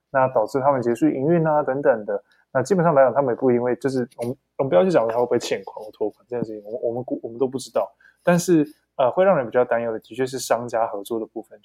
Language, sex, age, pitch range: Chinese, male, 20-39, 115-150 Hz